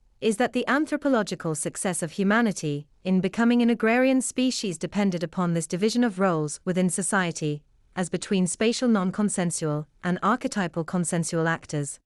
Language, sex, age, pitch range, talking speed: English, female, 30-49, 165-225 Hz, 140 wpm